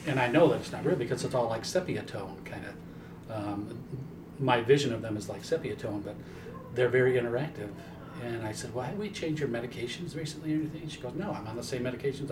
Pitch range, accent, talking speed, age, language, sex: 115-150 Hz, American, 240 wpm, 40-59, English, male